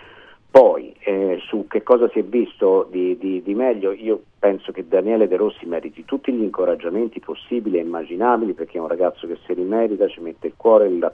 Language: Italian